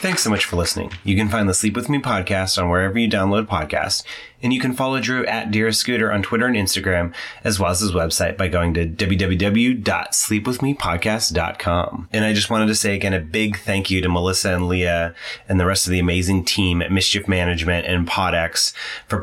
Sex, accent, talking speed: male, American, 210 wpm